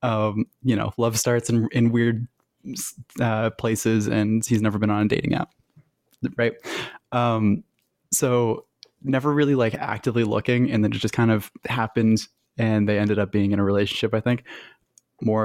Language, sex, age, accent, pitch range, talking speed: English, male, 20-39, American, 105-125 Hz, 170 wpm